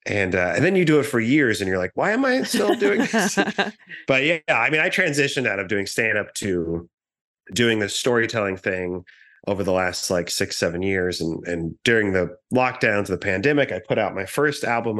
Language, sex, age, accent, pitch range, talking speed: English, male, 30-49, American, 100-125 Hz, 215 wpm